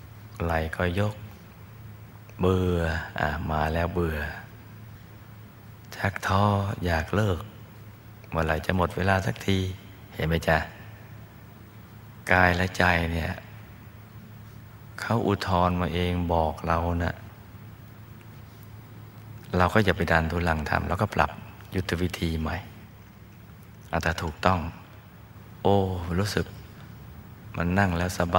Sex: male